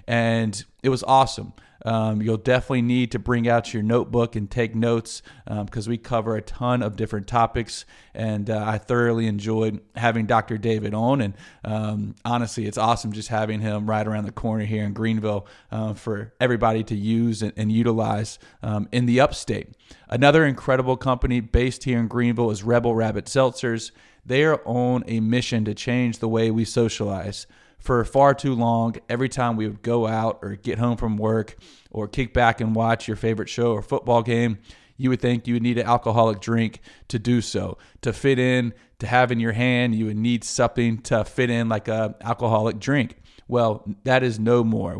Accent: American